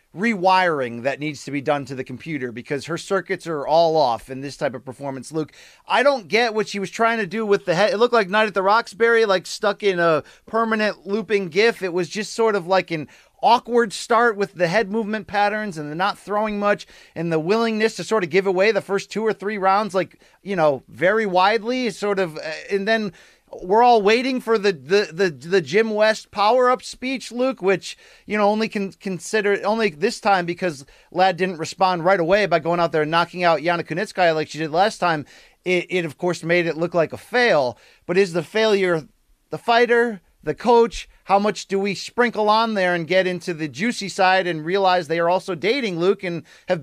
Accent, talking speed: American, 220 wpm